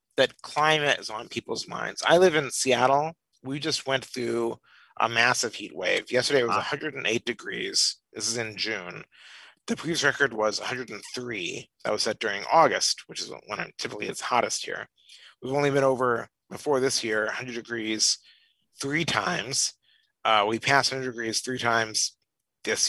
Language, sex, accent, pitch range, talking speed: English, male, American, 110-150 Hz, 165 wpm